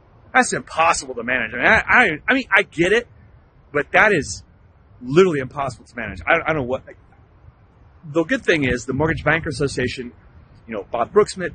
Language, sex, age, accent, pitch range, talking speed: English, male, 30-49, American, 105-165 Hz, 185 wpm